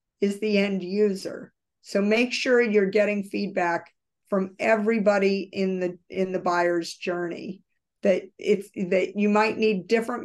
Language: English